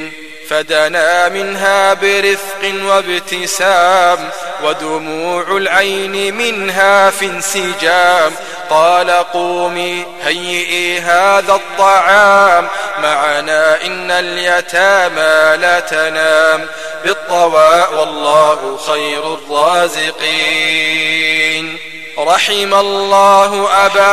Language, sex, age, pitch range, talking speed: Arabic, male, 20-39, 155-195 Hz, 65 wpm